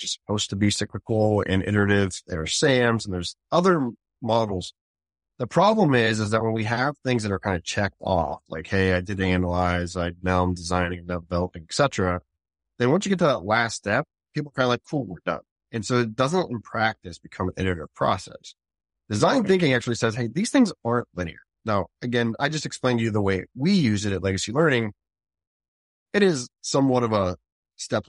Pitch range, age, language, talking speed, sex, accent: 90-120 Hz, 30-49, English, 205 wpm, male, American